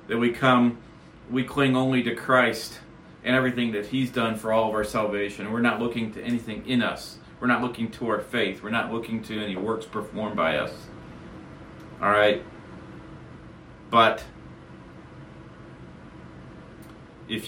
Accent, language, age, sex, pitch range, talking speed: American, English, 40-59, male, 105-125 Hz, 150 wpm